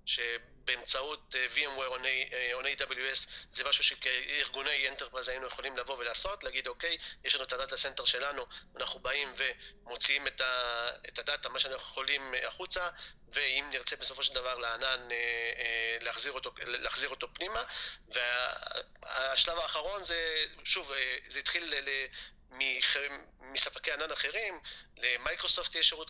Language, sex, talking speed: Hebrew, male, 120 wpm